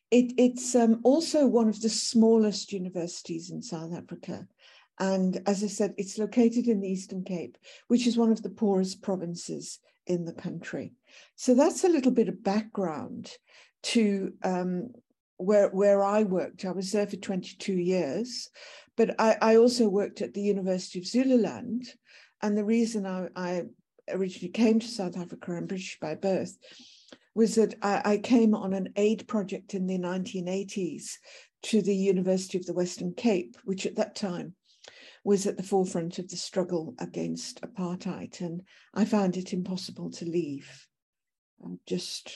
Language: English